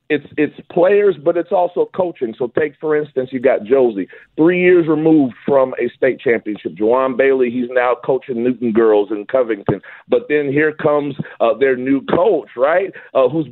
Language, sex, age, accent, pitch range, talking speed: English, male, 40-59, American, 150-205 Hz, 180 wpm